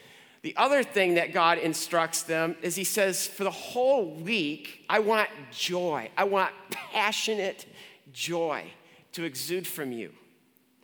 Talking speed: 140 wpm